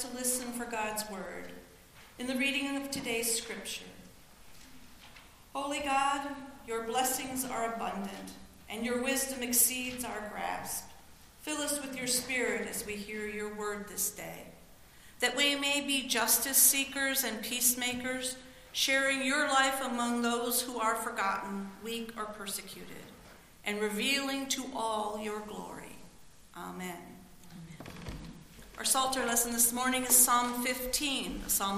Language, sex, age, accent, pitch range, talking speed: English, female, 50-69, American, 215-260 Hz, 135 wpm